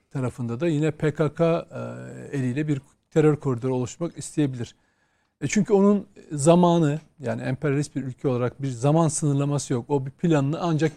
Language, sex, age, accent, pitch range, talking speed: Turkish, male, 40-59, native, 145-195 Hz, 150 wpm